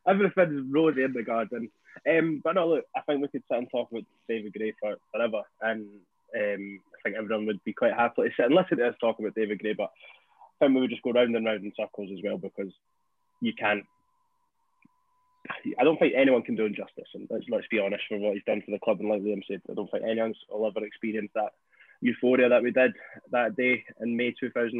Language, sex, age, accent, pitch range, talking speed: English, male, 20-39, British, 115-150 Hz, 230 wpm